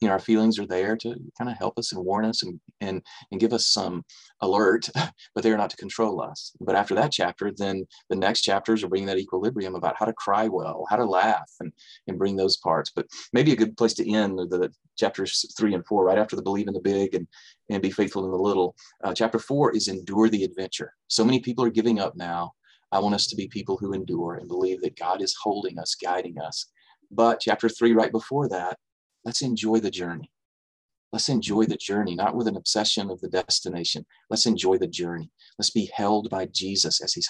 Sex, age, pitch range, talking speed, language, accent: male, 30-49, 95-115 Hz, 230 wpm, English, American